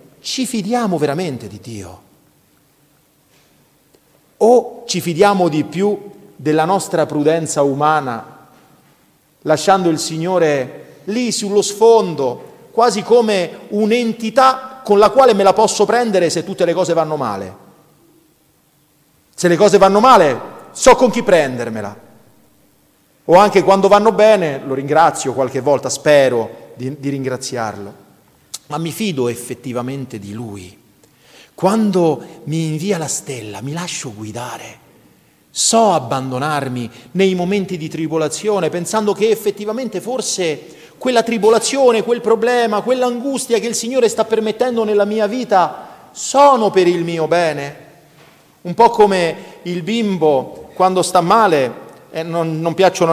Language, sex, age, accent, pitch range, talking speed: Italian, male, 40-59, native, 150-215 Hz, 130 wpm